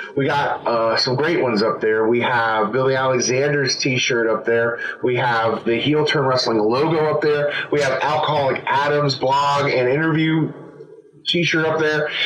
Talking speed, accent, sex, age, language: 175 wpm, American, male, 30-49, English